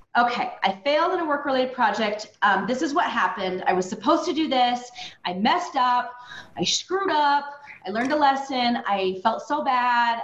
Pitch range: 195-255 Hz